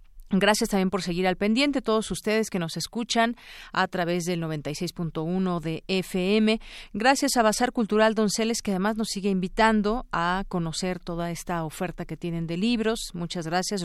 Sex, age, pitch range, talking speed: female, 40-59, 165-215 Hz, 165 wpm